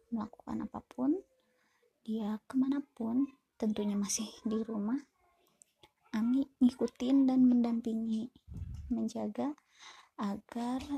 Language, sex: Indonesian, female